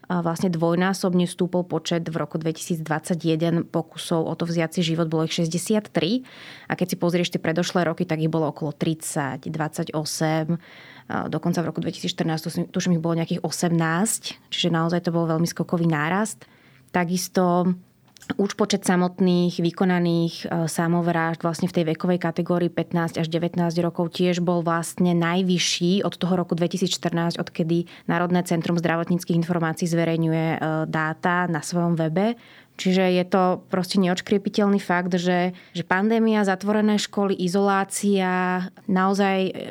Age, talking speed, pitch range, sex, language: 20-39, 135 wpm, 170-190 Hz, female, Slovak